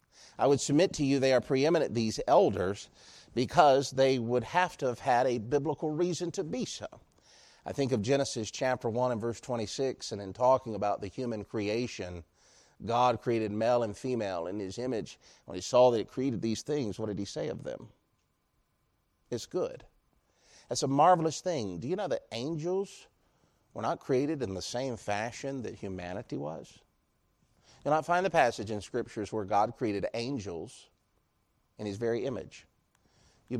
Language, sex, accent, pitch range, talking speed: English, male, American, 100-135 Hz, 175 wpm